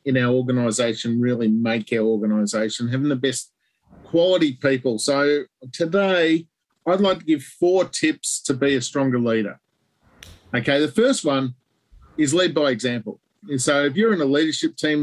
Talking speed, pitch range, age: 165 wpm, 130-160 Hz, 40-59